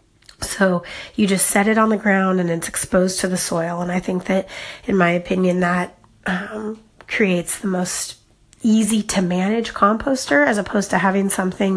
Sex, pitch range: female, 185-220 Hz